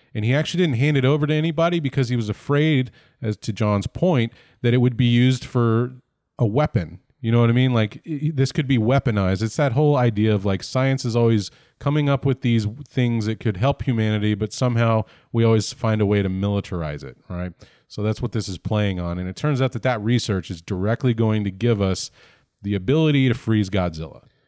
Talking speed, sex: 220 wpm, male